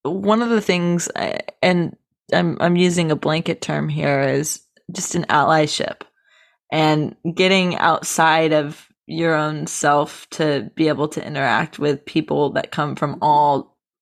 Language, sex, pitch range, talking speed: English, female, 155-180 Hz, 145 wpm